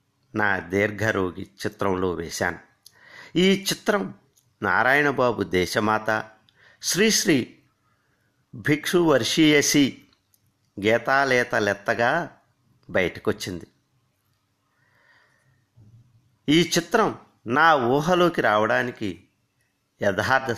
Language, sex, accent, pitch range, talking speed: Telugu, male, native, 100-130 Hz, 60 wpm